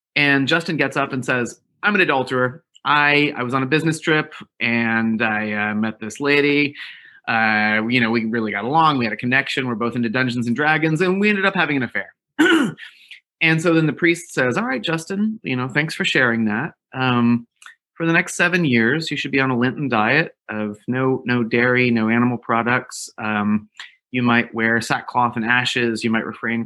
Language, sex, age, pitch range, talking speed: English, male, 30-49, 110-145 Hz, 205 wpm